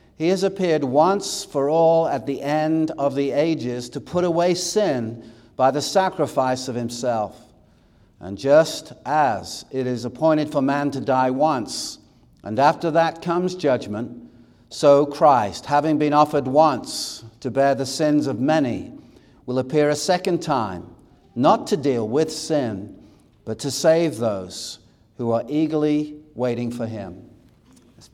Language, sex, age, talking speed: English, male, 60-79, 150 wpm